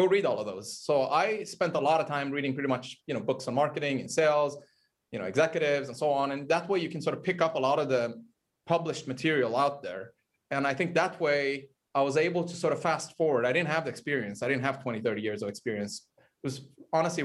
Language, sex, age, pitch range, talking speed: English, male, 30-49, 125-160 Hz, 255 wpm